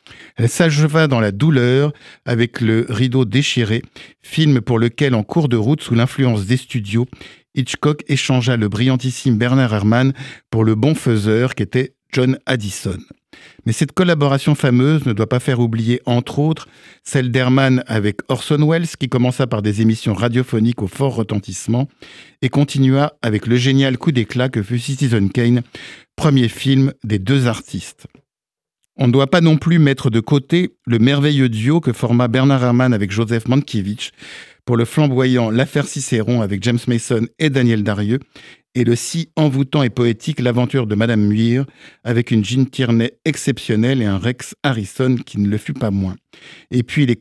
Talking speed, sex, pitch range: 175 wpm, male, 115-135 Hz